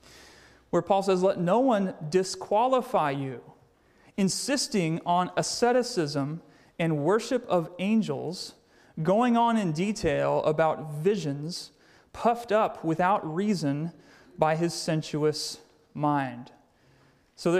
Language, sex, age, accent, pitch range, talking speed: English, male, 30-49, American, 165-210 Hz, 100 wpm